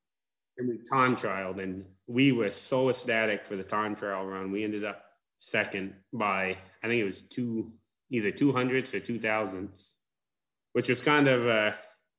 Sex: male